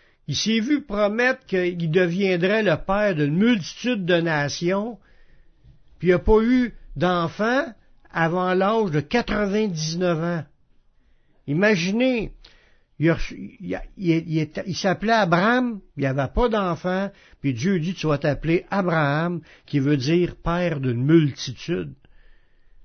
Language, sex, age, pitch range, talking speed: French, male, 60-79, 155-205 Hz, 120 wpm